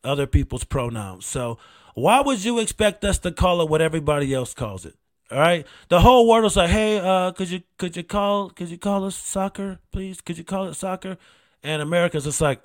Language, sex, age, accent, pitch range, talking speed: English, male, 30-49, American, 135-190 Hz, 220 wpm